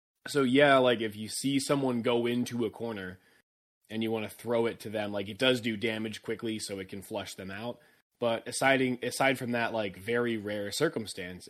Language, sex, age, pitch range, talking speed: English, male, 20-39, 110-140 Hz, 210 wpm